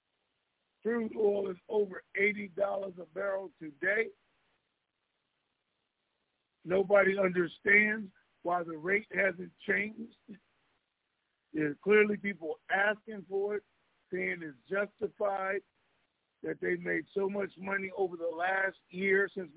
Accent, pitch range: American, 180-210 Hz